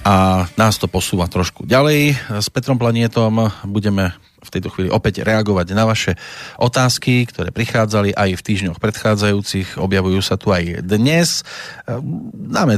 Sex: male